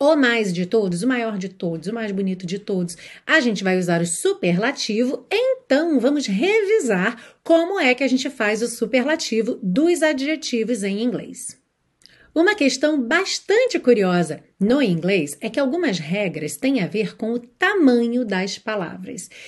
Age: 40-59